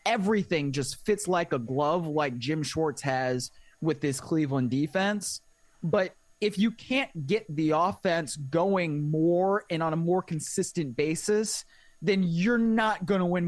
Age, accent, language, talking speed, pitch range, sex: 20-39, American, English, 155 wpm, 155-225 Hz, male